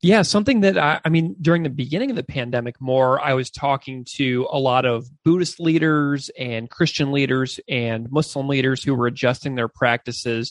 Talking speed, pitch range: 190 wpm, 120-150 Hz